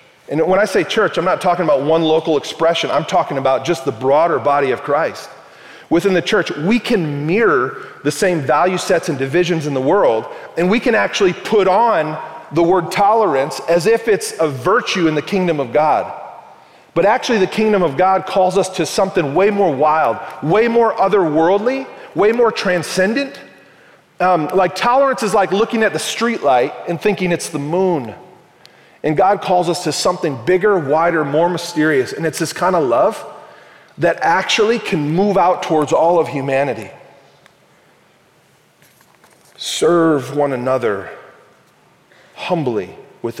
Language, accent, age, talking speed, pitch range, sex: English, American, 40-59, 165 wpm, 140-190 Hz, male